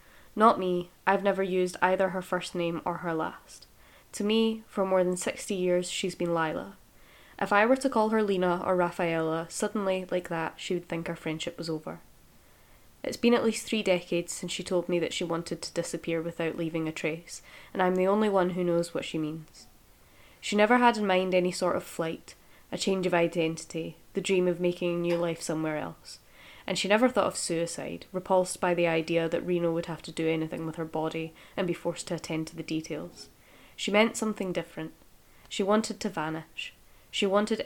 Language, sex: English, female